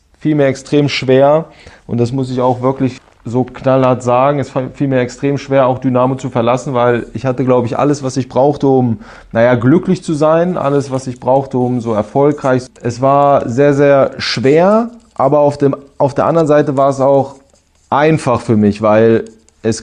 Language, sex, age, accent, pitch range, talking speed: German, male, 30-49, German, 120-135 Hz, 190 wpm